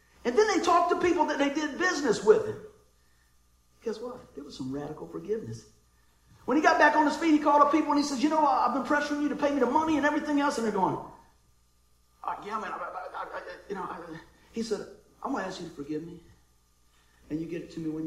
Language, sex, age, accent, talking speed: English, male, 50-69, American, 230 wpm